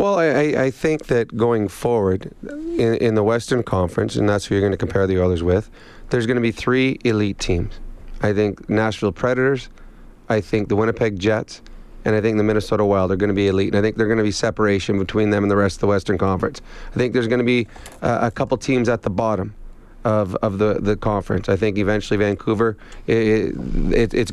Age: 30-49